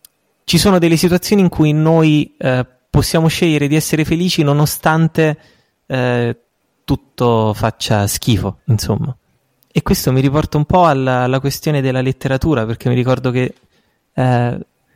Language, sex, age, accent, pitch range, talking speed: Italian, male, 20-39, native, 120-150 Hz, 140 wpm